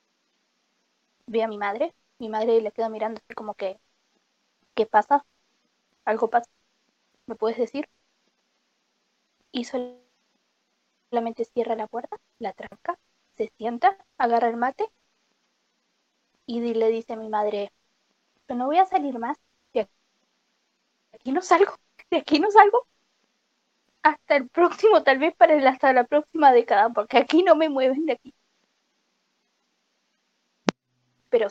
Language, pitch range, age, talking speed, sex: English, 225-290 Hz, 20-39, 135 wpm, female